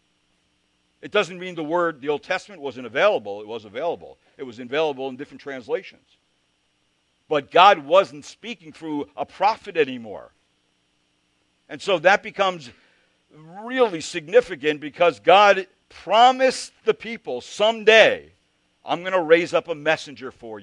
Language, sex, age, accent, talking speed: English, male, 60-79, American, 135 wpm